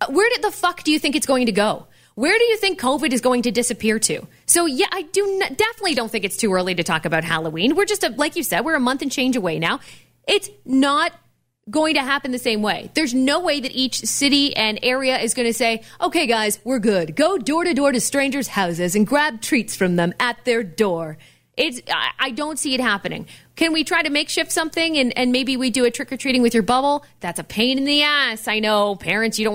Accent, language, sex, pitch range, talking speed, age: American, English, female, 200-285 Hz, 250 wpm, 30-49